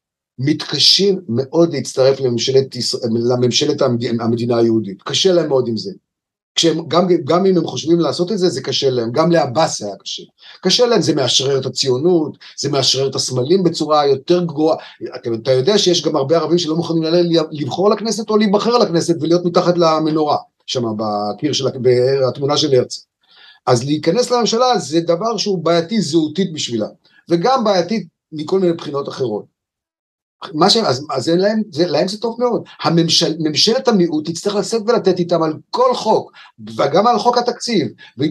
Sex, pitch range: male, 135-200 Hz